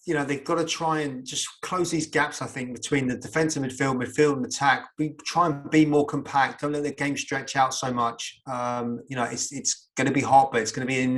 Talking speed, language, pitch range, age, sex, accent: 265 wpm, English, 125-145 Hz, 20-39, male, British